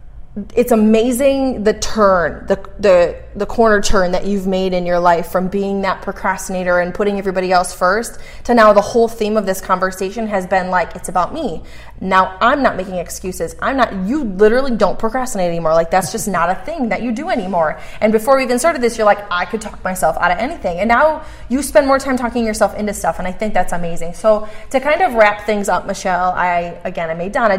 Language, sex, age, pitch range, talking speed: English, female, 20-39, 175-220 Hz, 225 wpm